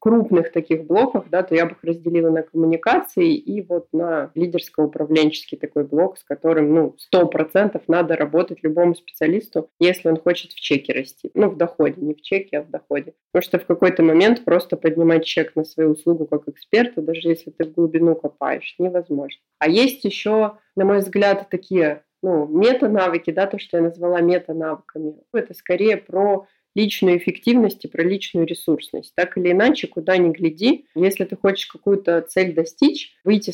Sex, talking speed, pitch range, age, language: female, 175 wpm, 160-190 Hz, 20-39, Russian